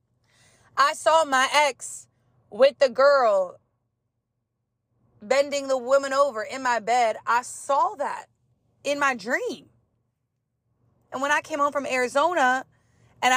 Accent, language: American, English